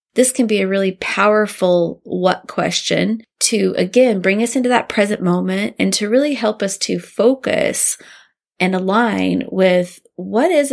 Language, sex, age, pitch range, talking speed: English, female, 20-39, 180-215 Hz, 155 wpm